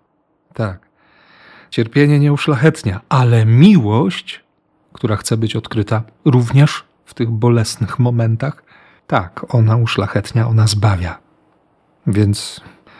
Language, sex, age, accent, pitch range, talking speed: Polish, male, 40-59, native, 110-130 Hz, 95 wpm